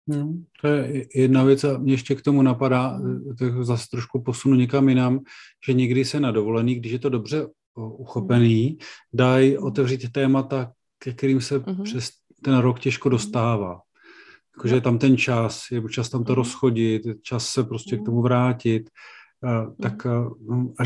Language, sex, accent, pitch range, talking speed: Czech, male, native, 120-135 Hz, 165 wpm